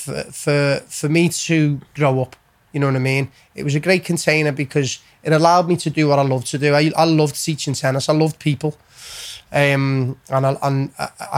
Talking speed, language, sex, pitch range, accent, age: 215 wpm, English, male, 135-155 Hz, British, 20-39